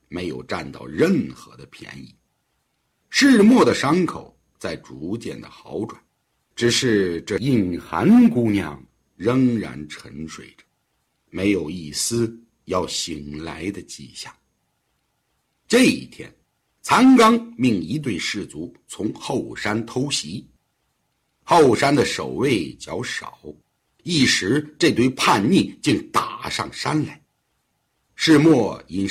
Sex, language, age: male, Chinese, 60-79